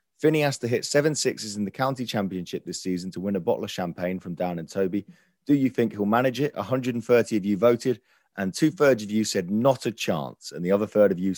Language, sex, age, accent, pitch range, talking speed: English, male, 30-49, British, 95-140 Hz, 245 wpm